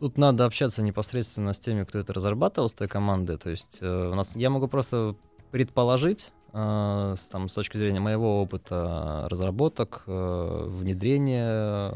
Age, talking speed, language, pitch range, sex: 20-39, 140 wpm, Russian, 95-115 Hz, male